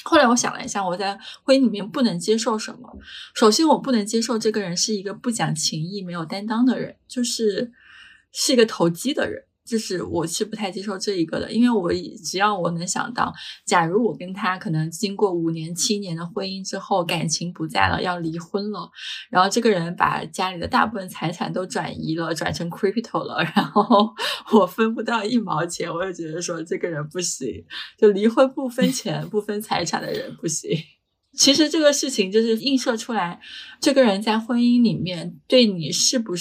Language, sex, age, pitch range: Chinese, female, 20-39, 175-230 Hz